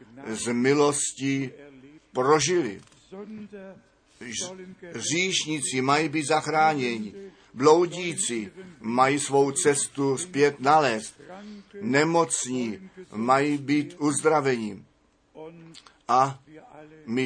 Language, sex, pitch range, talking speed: Czech, male, 130-165 Hz, 65 wpm